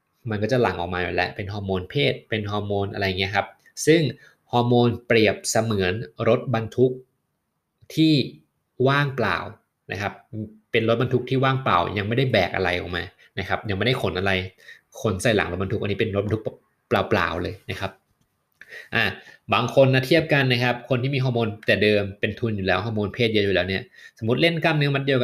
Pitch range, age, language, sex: 100-130 Hz, 20-39, Thai, male